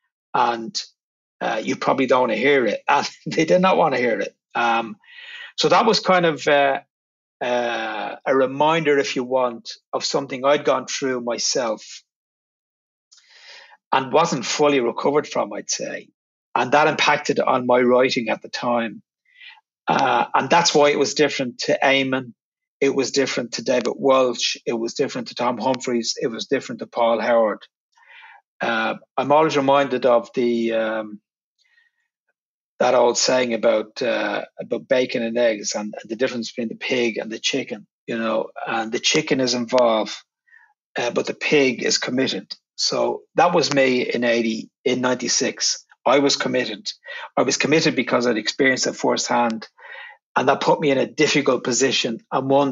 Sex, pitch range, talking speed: male, 125-155 Hz, 165 wpm